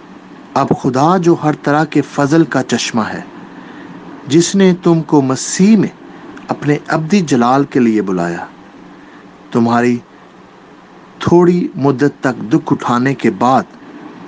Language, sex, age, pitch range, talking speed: English, male, 50-69, 135-175 Hz, 115 wpm